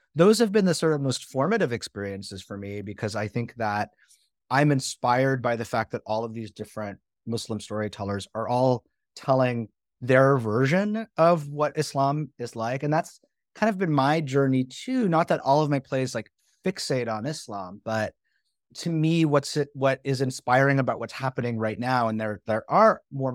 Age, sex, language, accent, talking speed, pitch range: 30-49, male, English, American, 190 wpm, 115-150 Hz